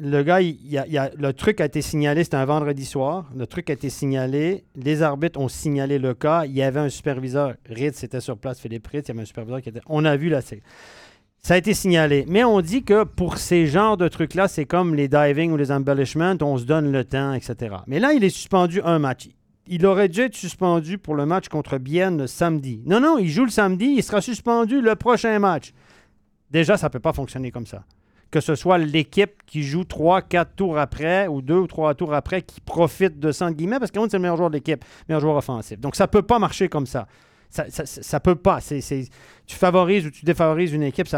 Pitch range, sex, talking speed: 140-185 Hz, male, 245 wpm